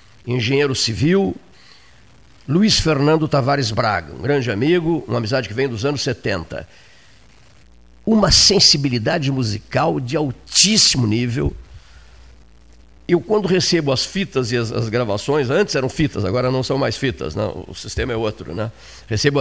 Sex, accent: male, Brazilian